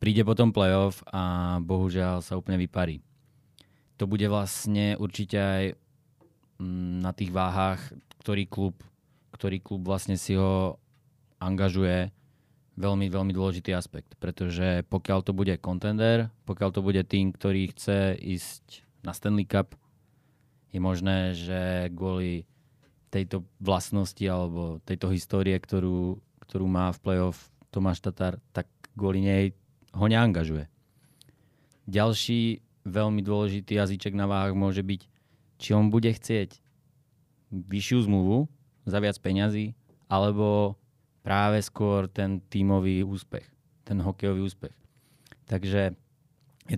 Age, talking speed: 20-39, 115 wpm